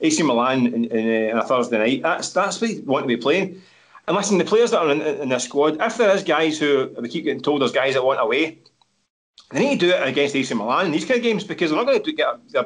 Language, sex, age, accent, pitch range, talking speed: English, male, 30-49, British, 120-185 Hz, 290 wpm